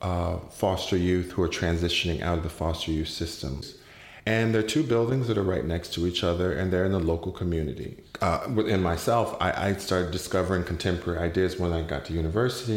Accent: American